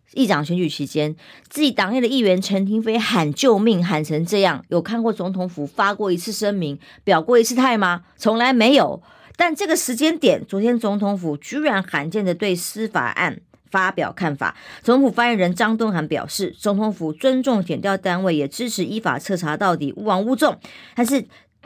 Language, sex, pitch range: Chinese, male, 170-235 Hz